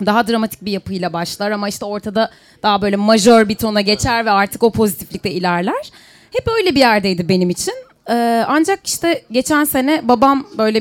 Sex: female